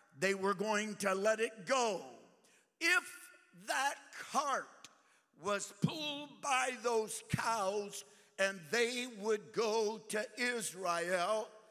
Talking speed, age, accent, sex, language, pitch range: 110 wpm, 60-79, American, male, English, 195-235 Hz